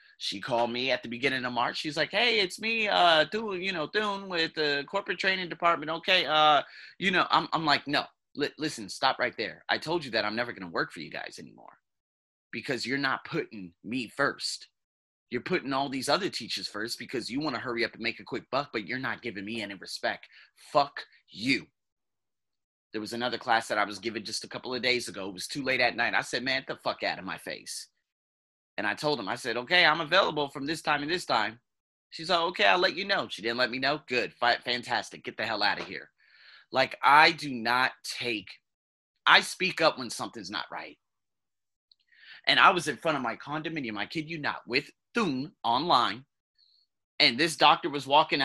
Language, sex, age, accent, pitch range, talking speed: English, male, 30-49, American, 115-165 Hz, 220 wpm